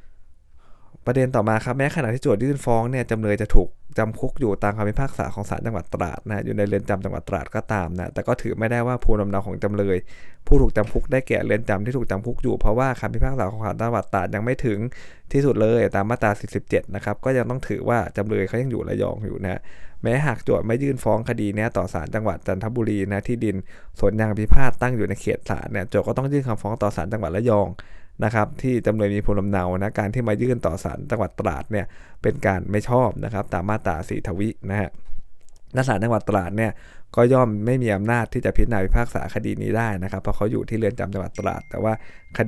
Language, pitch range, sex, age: Thai, 100-120 Hz, male, 20-39